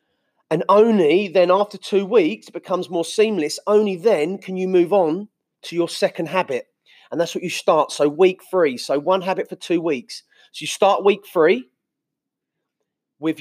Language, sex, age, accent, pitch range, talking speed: English, male, 30-49, British, 155-190 Hz, 175 wpm